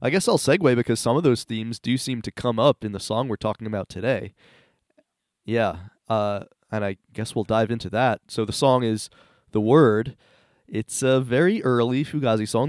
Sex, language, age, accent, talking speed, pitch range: male, English, 20-39, American, 200 wpm, 105-135 Hz